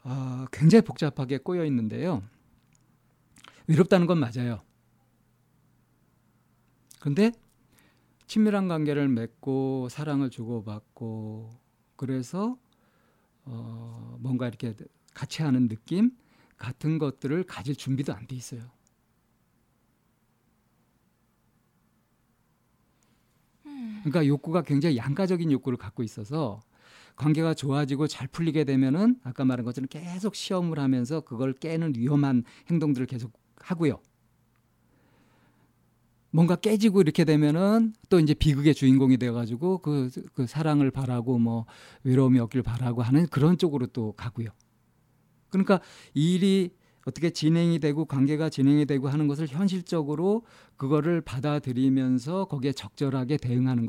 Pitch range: 125-160 Hz